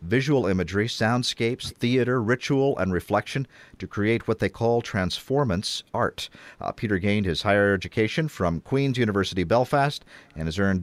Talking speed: 150 wpm